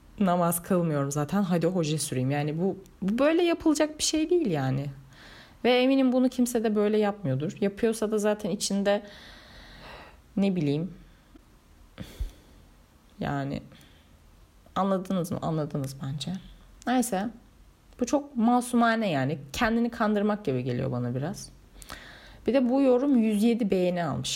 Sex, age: female, 30-49